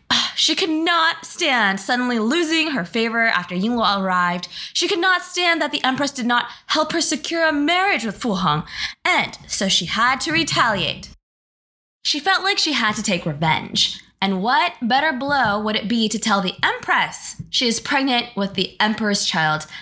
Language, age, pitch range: English, 20-39, 205-320 Hz